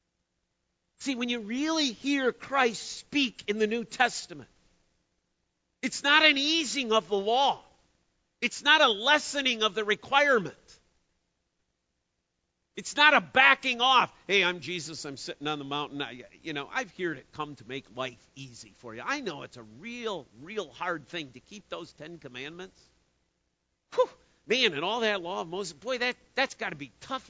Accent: American